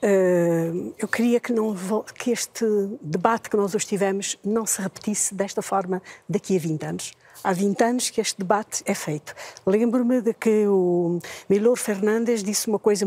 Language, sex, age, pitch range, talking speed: Portuguese, female, 50-69, 190-235 Hz, 170 wpm